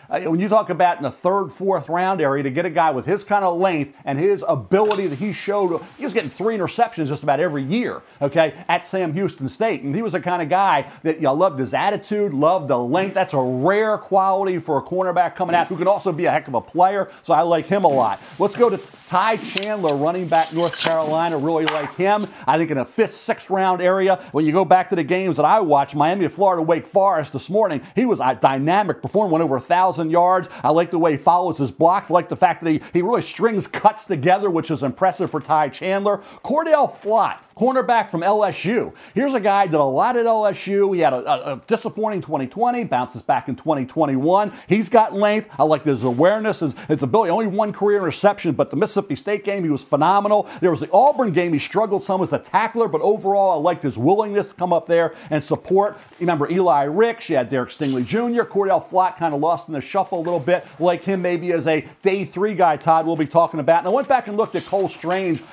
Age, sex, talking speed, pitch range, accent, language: 40-59, male, 240 wpm, 160-200 Hz, American, English